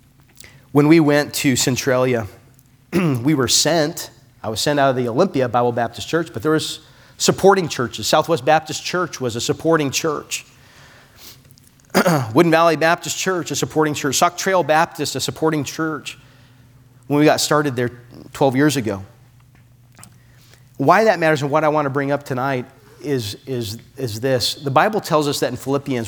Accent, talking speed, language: American, 170 wpm, English